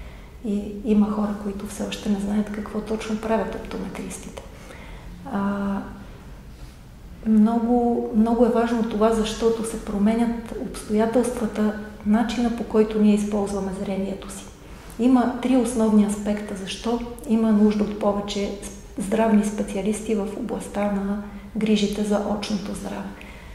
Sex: female